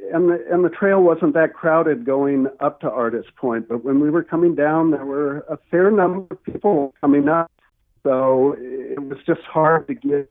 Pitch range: 120-155 Hz